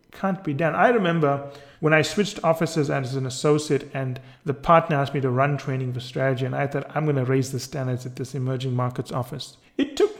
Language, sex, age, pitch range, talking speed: English, male, 30-49, 135-165 Hz, 225 wpm